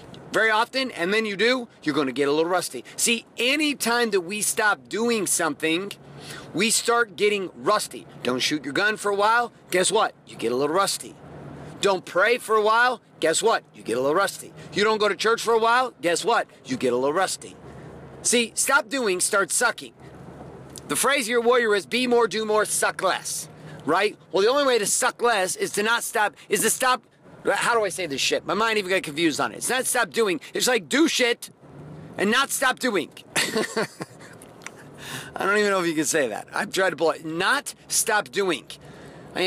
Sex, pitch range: male, 165-235 Hz